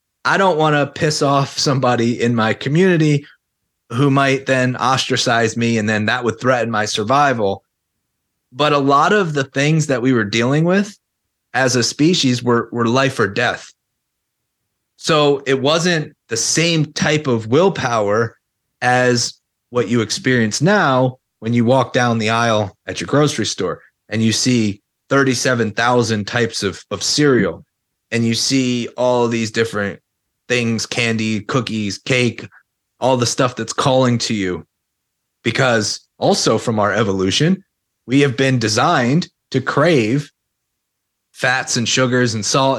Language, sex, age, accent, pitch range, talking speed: English, male, 30-49, American, 115-140 Hz, 145 wpm